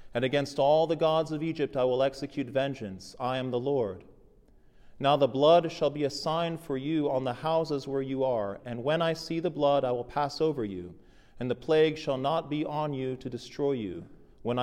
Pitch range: 125-155 Hz